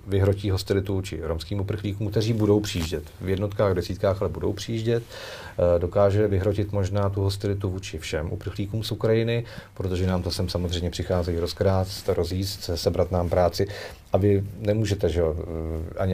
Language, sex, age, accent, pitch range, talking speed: Czech, male, 40-59, native, 90-100 Hz, 150 wpm